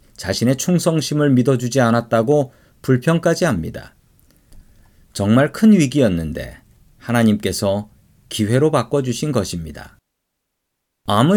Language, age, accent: Korean, 40-59, native